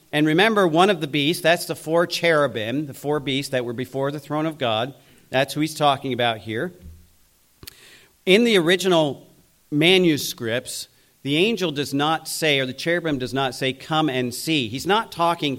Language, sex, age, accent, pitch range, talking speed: English, male, 40-59, American, 130-170 Hz, 180 wpm